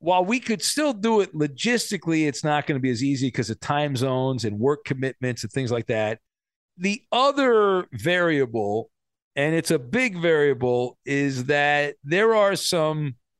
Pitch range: 140-195 Hz